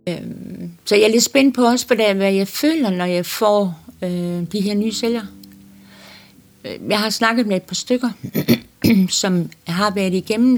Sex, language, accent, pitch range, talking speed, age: female, Danish, native, 165-215 Hz, 160 wpm, 60-79